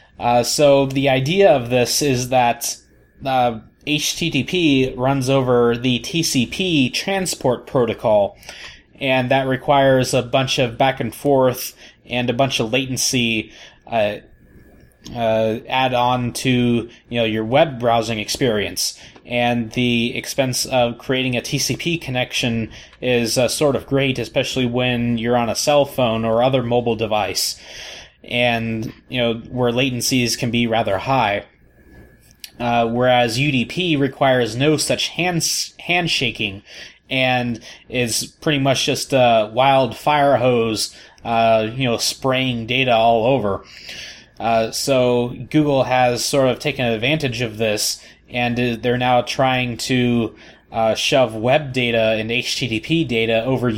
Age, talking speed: 20-39, 130 wpm